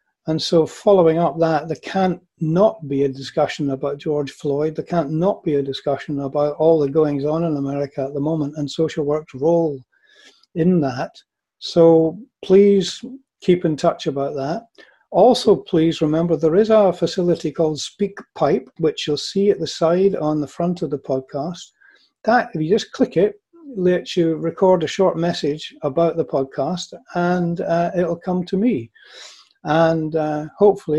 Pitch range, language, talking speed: 150-180 Hz, English, 170 wpm